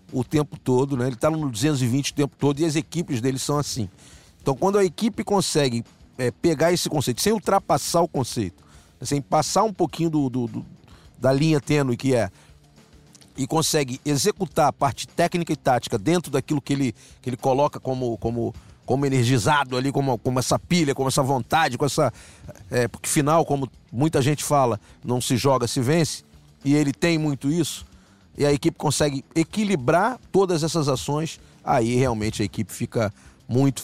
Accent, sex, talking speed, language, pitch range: Brazilian, male, 180 wpm, Portuguese, 120-155 Hz